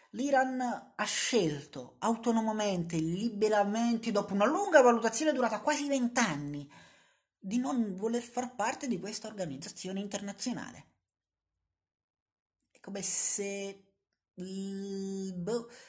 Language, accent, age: Italian, native, 30-49